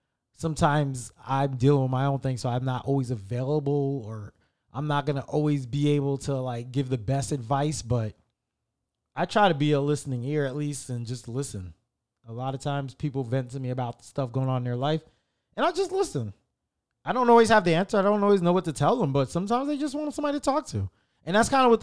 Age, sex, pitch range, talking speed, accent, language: 20-39, male, 130-165 Hz, 235 wpm, American, English